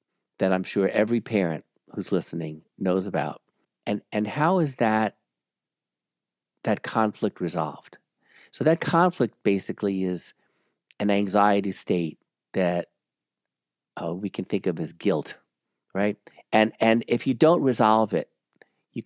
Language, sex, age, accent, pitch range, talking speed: English, male, 50-69, American, 95-130 Hz, 130 wpm